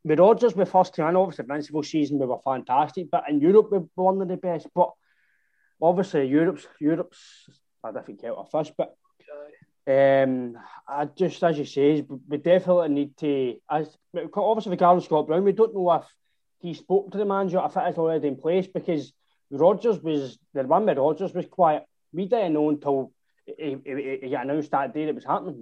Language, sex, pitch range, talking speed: English, male, 140-175 Hz, 195 wpm